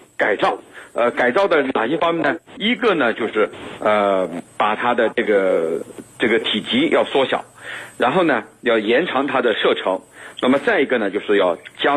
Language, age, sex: Chinese, 50-69, male